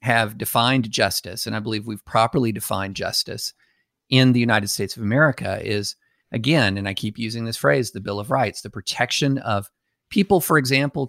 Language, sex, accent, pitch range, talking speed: English, male, American, 110-135 Hz, 185 wpm